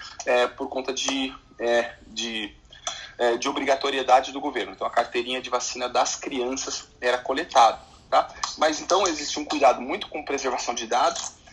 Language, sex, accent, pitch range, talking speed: Portuguese, male, Brazilian, 125-155 Hz, 135 wpm